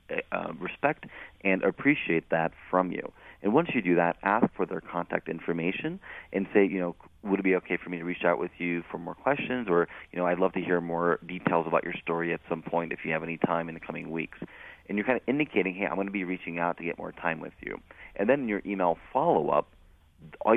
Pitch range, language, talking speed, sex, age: 85-100 Hz, English, 245 wpm, male, 30-49